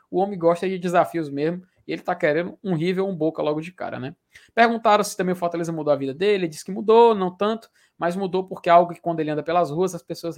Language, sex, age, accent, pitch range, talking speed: Portuguese, male, 20-39, Brazilian, 150-190 Hz, 265 wpm